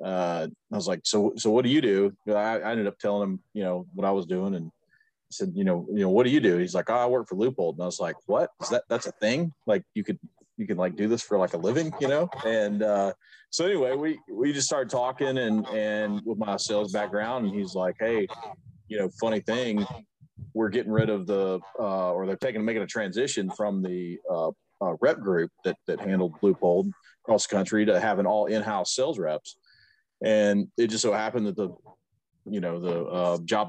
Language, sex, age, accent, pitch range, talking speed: English, male, 40-59, American, 100-125 Hz, 230 wpm